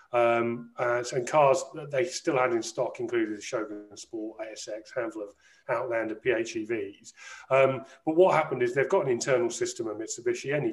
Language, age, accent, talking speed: English, 40-59, British, 185 wpm